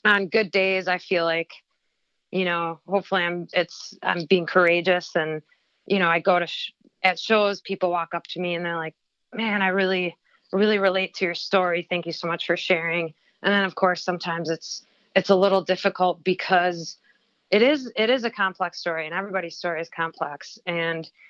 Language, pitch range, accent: English, 165-195 Hz, American